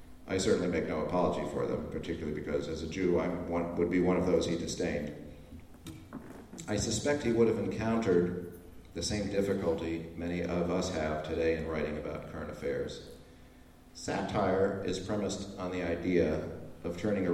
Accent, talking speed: American, 165 wpm